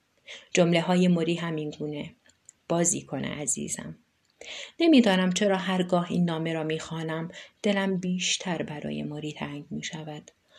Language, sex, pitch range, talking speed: Persian, female, 160-185 Hz, 135 wpm